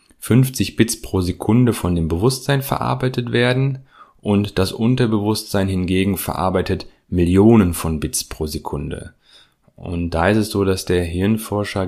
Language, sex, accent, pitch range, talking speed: German, male, German, 90-115 Hz, 135 wpm